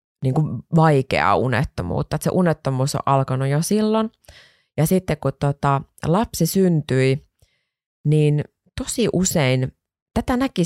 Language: Finnish